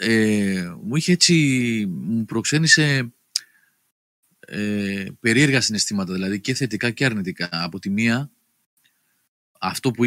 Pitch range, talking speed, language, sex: 100-145 Hz, 105 wpm, Greek, male